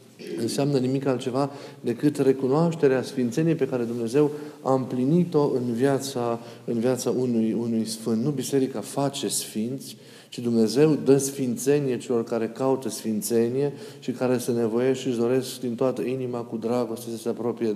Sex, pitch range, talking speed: male, 115-135 Hz, 150 wpm